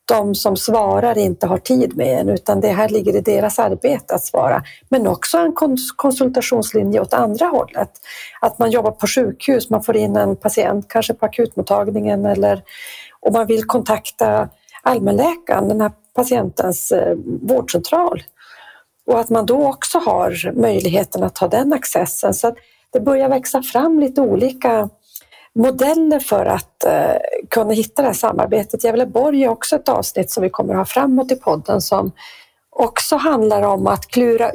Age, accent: 40-59, native